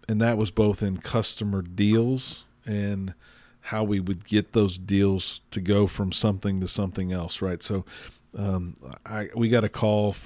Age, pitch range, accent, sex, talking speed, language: 40-59, 95-110 Hz, American, male, 170 wpm, English